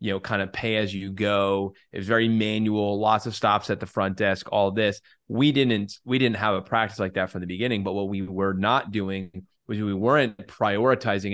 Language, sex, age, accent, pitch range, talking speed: English, male, 20-39, American, 100-125 Hz, 220 wpm